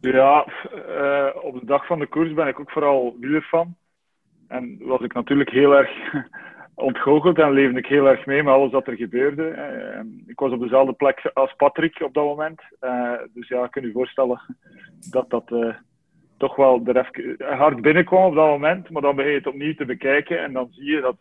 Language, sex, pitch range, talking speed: Dutch, male, 130-155 Hz, 205 wpm